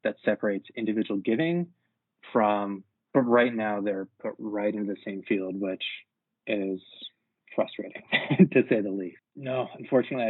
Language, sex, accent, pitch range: English, male, American, 105-130 Hz